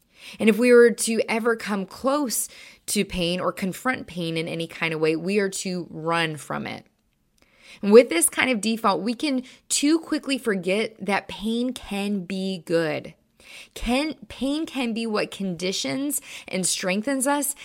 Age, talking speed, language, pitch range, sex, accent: 20-39, 160 wpm, English, 180-230 Hz, female, American